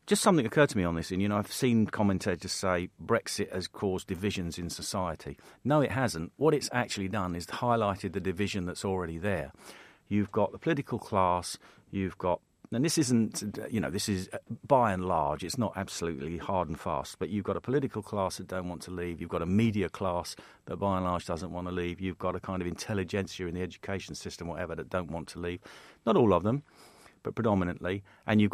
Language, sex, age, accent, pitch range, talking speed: English, male, 50-69, British, 90-105 Hz, 220 wpm